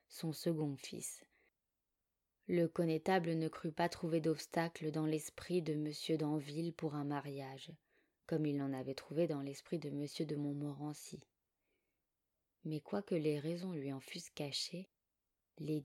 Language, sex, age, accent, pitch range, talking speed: French, female, 20-39, French, 150-170 Hz, 145 wpm